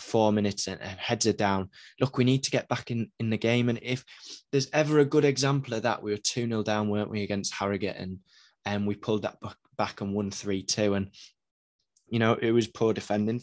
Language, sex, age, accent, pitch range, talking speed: English, male, 20-39, British, 100-120 Hz, 230 wpm